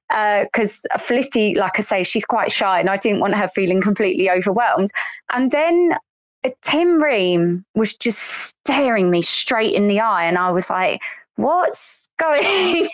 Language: English